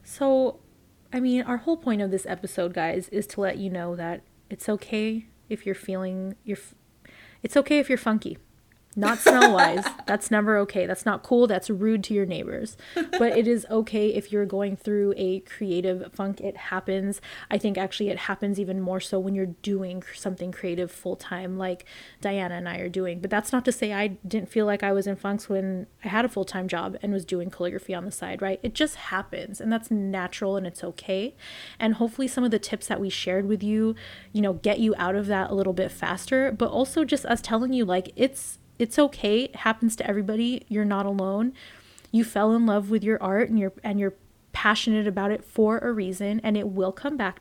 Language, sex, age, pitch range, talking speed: English, female, 20-39, 190-225 Hz, 215 wpm